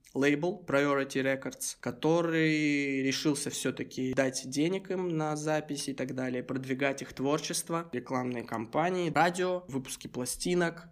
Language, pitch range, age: Russian, 130-155 Hz, 20-39